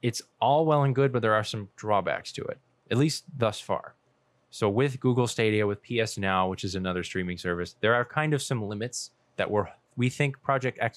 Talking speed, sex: 220 wpm, male